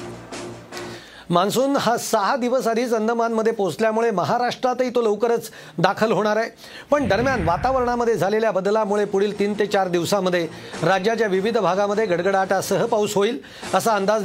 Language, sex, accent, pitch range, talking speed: Marathi, male, native, 190-230 Hz, 140 wpm